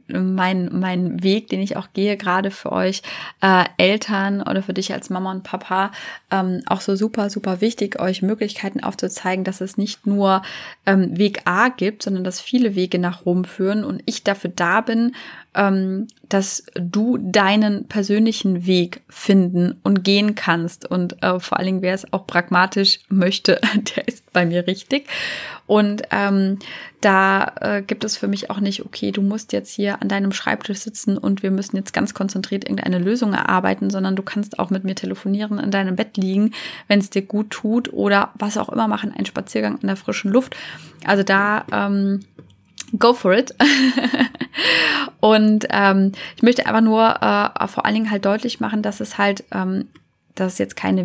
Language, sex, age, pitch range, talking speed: German, female, 20-39, 190-215 Hz, 180 wpm